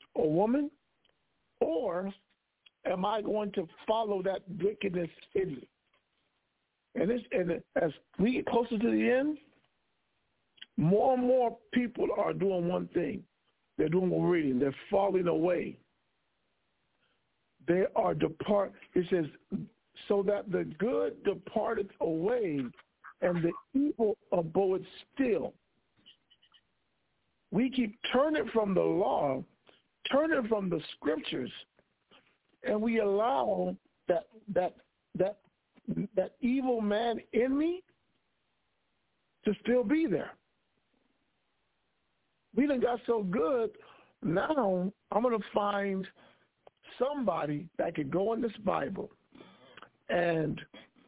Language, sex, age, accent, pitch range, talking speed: English, male, 50-69, American, 180-245 Hz, 115 wpm